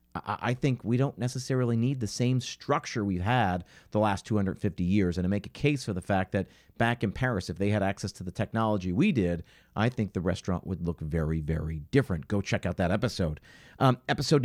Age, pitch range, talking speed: 50-69, 95-125 Hz, 215 wpm